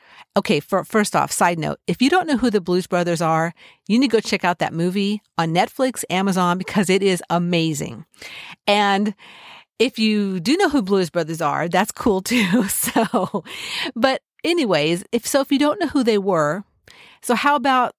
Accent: American